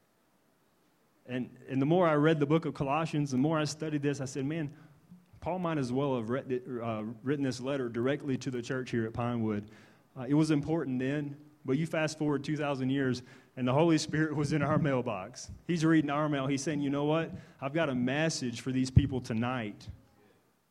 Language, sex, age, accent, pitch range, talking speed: English, male, 30-49, American, 120-150 Hz, 205 wpm